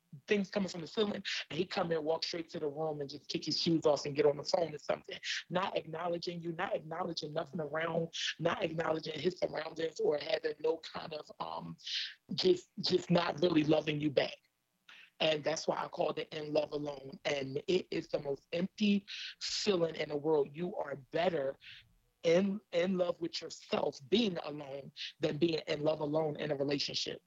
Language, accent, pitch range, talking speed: English, American, 150-185 Hz, 195 wpm